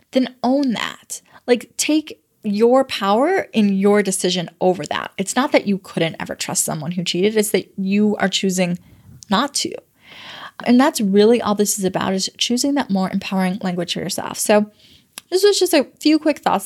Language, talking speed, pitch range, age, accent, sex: English, 185 wpm, 205-270 Hz, 10-29, American, female